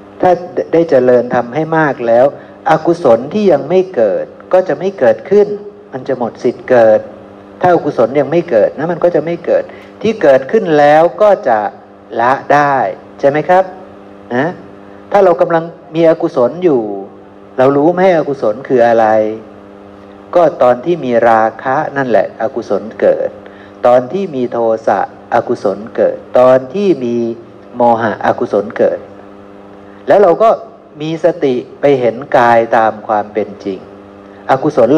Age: 60-79